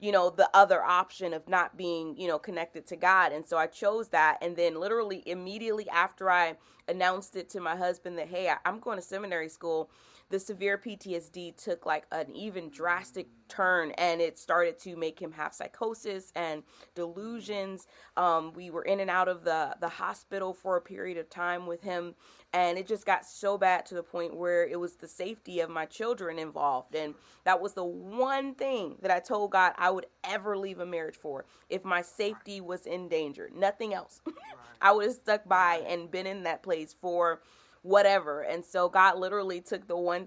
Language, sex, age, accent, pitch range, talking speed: English, female, 30-49, American, 170-200 Hz, 205 wpm